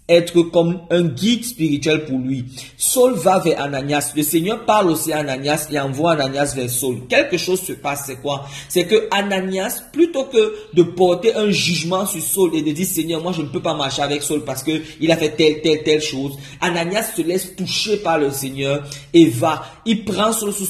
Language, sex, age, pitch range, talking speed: French, male, 50-69, 145-185 Hz, 210 wpm